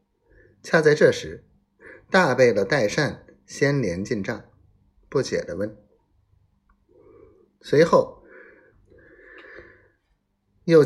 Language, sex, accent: Chinese, male, native